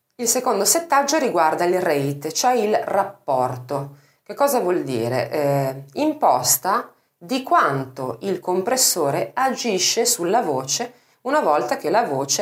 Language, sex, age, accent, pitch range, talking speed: Italian, female, 30-49, native, 135-220 Hz, 130 wpm